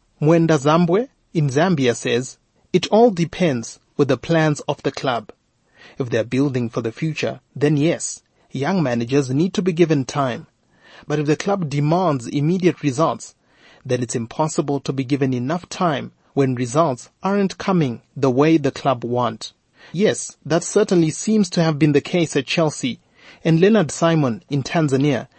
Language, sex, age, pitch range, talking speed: English, male, 30-49, 135-170 Hz, 165 wpm